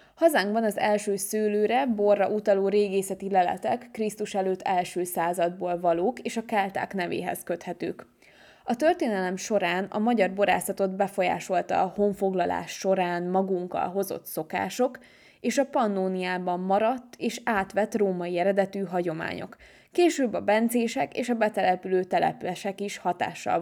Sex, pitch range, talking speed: female, 180-215 Hz, 125 wpm